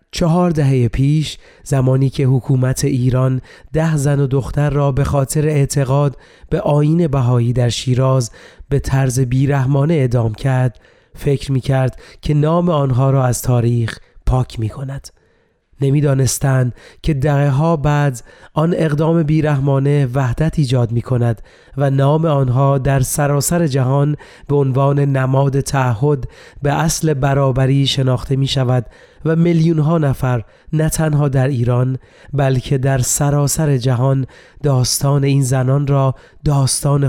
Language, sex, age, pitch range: Persian, male, 30-49, 130-150 Hz